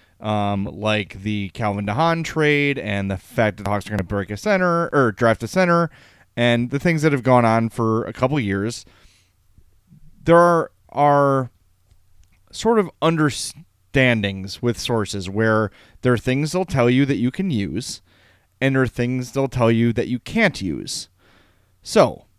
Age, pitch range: 30-49, 100-140 Hz